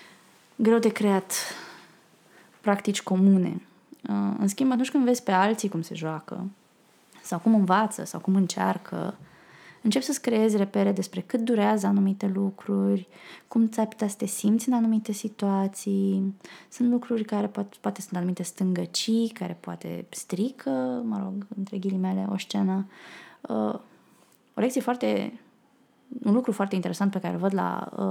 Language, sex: Romanian, female